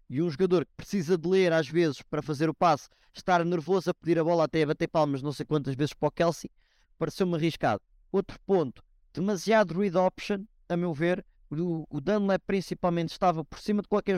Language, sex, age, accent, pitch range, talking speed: Portuguese, male, 20-39, Brazilian, 165-200 Hz, 200 wpm